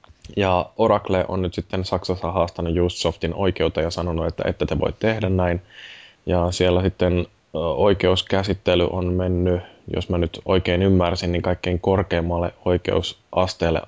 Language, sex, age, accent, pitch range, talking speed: Finnish, male, 20-39, native, 85-95 Hz, 140 wpm